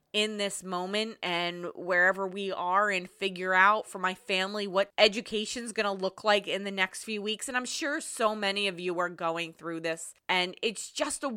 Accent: American